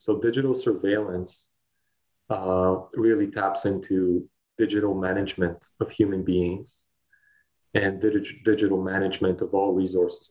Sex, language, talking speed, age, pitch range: male, English, 105 wpm, 30-49, 90-105 Hz